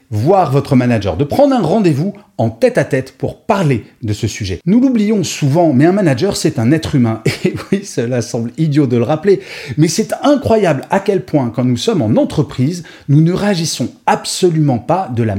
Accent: French